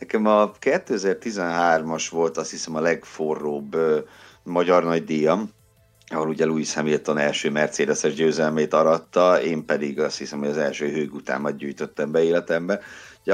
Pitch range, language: 85-130 Hz, Hungarian